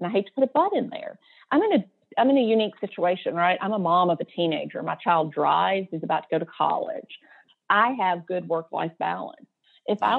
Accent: American